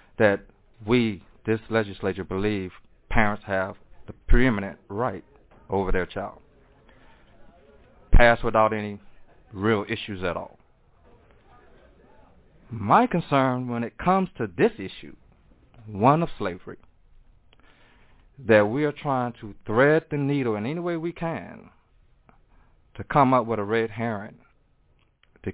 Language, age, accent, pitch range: English, 40-59, American, 100-120 Hz